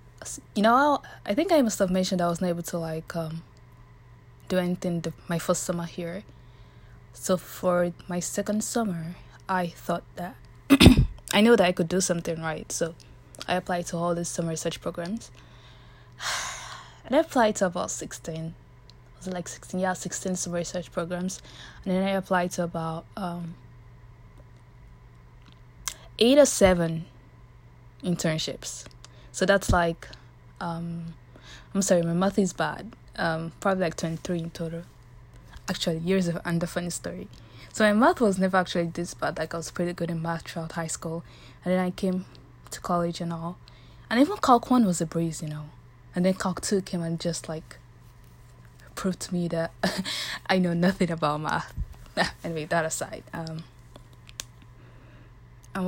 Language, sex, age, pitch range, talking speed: English, female, 20-39, 125-185 Hz, 165 wpm